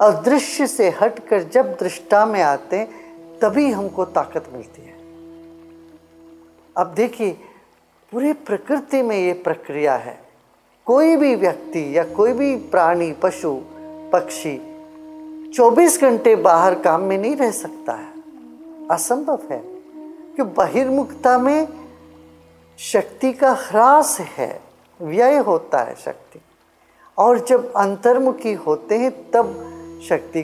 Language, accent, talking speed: English, Indian, 115 wpm